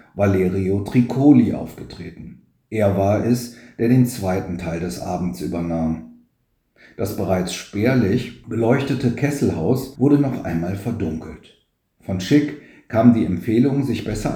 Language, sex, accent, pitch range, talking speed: German, male, German, 95-125 Hz, 120 wpm